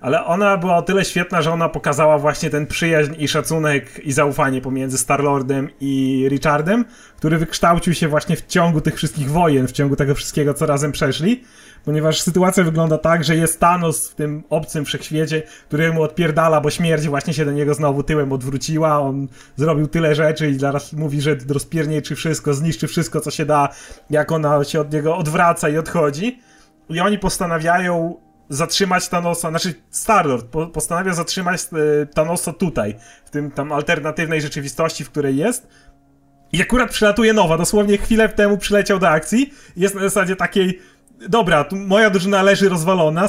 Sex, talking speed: male, 170 wpm